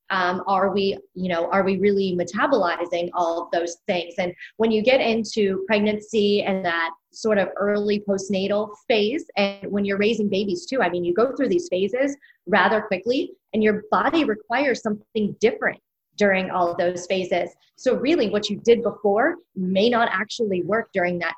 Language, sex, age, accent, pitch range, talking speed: English, female, 20-39, American, 190-235 Hz, 180 wpm